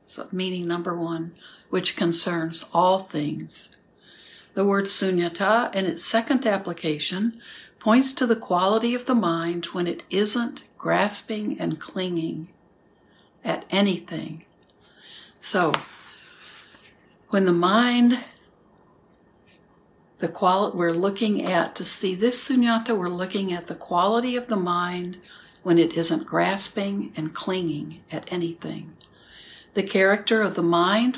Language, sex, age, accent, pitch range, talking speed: English, female, 60-79, American, 165-200 Hz, 120 wpm